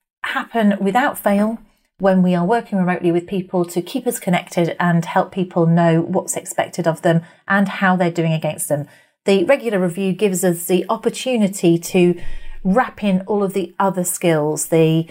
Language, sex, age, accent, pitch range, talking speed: English, female, 30-49, British, 170-210 Hz, 175 wpm